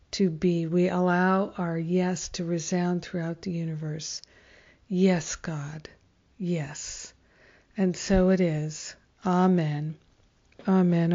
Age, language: 50-69, English